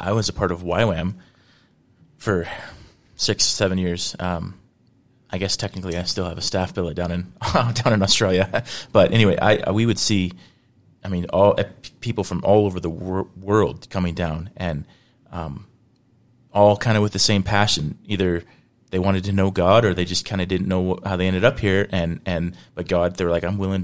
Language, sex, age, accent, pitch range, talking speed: English, male, 30-49, American, 90-105 Hz, 210 wpm